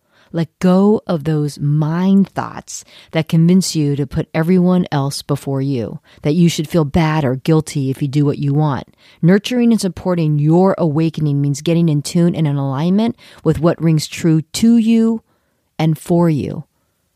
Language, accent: English, American